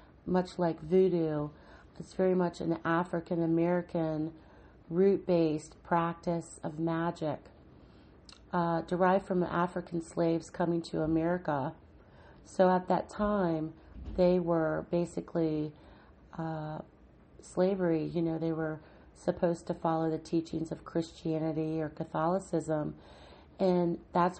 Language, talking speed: English, 110 wpm